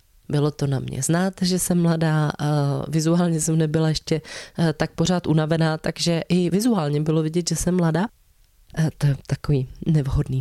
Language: Czech